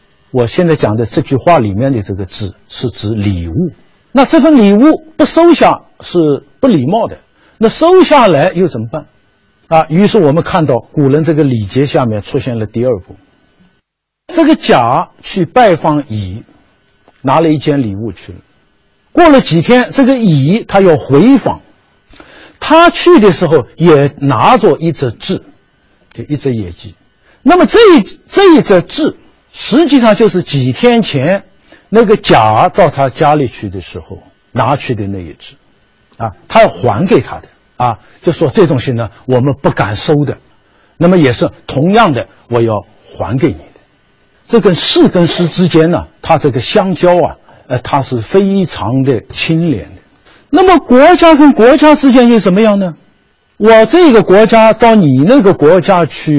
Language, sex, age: Chinese, male, 50-69